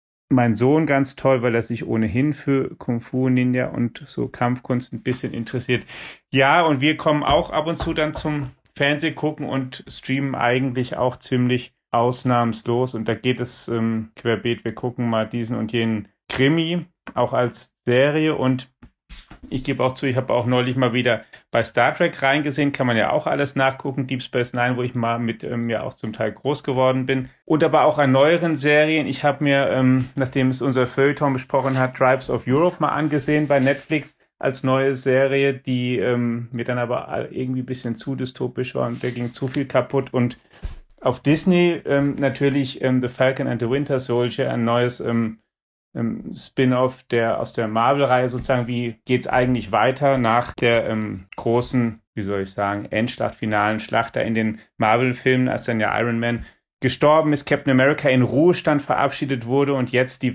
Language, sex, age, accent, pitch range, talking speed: German, male, 40-59, German, 120-140 Hz, 185 wpm